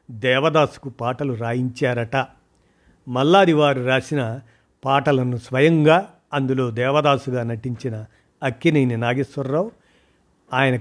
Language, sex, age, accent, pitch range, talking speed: Telugu, male, 50-69, native, 125-150 Hz, 70 wpm